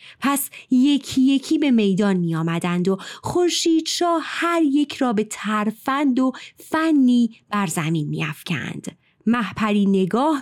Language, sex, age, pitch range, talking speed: Persian, female, 30-49, 195-275 Hz, 120 wpm